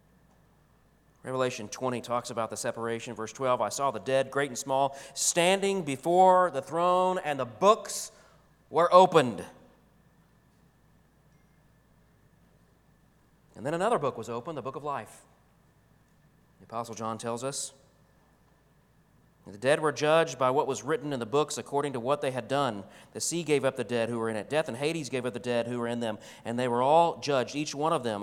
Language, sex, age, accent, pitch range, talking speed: English, male, 40-59, American, 115-150 Hz, 185 wpm